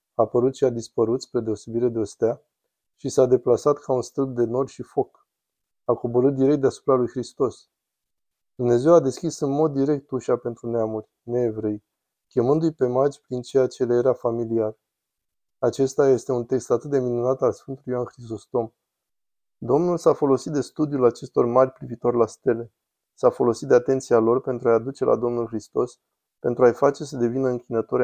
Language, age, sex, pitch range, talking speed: Romanian, 20-39, male, 115-135 Hz, 180 wpm